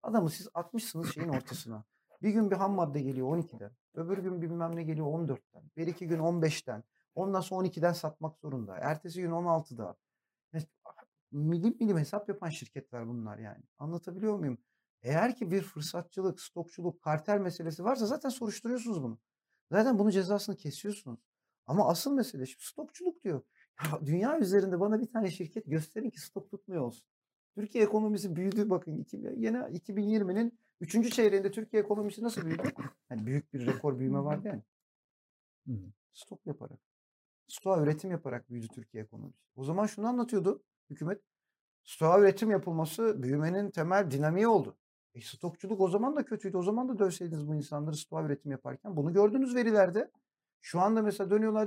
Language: Turkish